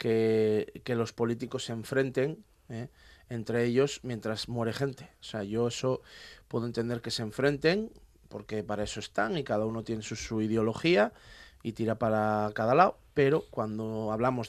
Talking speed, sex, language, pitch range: 165 wpm, male, Spanish, 110-130 Hz